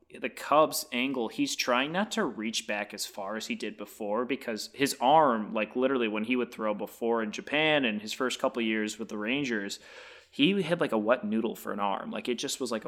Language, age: English, 20-39